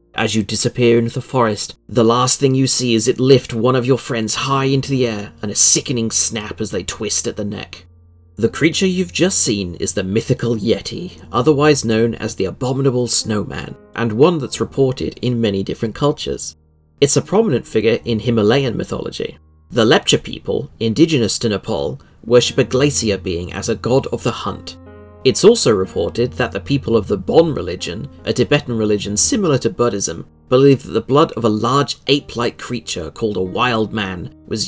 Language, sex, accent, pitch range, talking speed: English, male, British, 105-135 Hz, 185 wpm